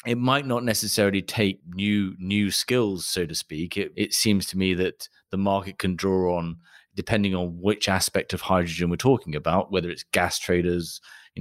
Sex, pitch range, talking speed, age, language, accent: male, 90-105 Hz, 190 wpm, 30-49, English, British